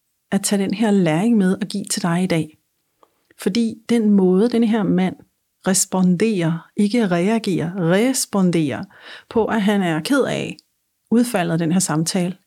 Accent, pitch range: native, 175-215 Hz